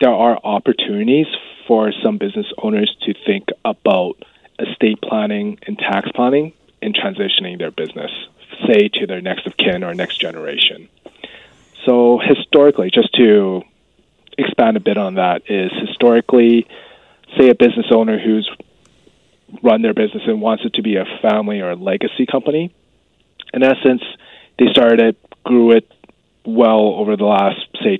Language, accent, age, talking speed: English, American, 20-39, 150 wpm